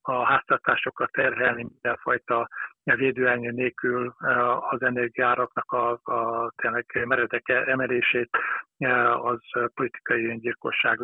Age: 60-79